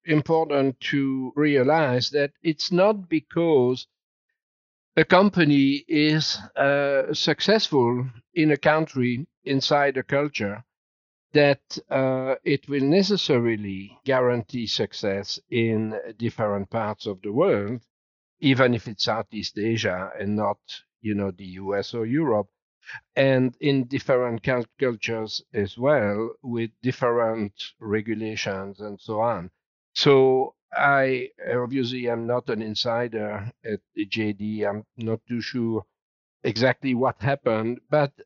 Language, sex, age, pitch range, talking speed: English, male, 50-69, 110-140 Hz, 115 wpm